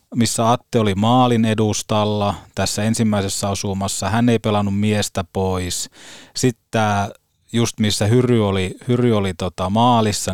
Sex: male